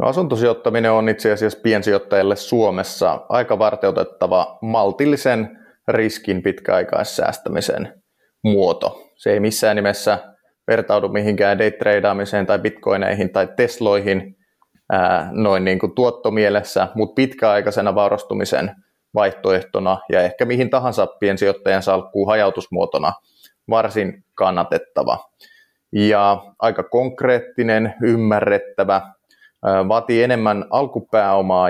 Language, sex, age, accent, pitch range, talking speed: Finnish, male, 30-49, native, 100-115 Hz, 90 wpm